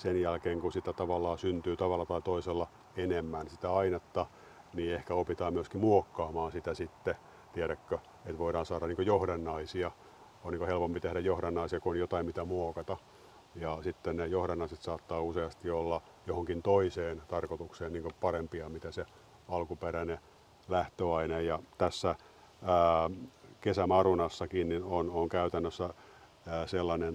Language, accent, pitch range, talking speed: Finnish, native, 85-90 Hz, 130 wpm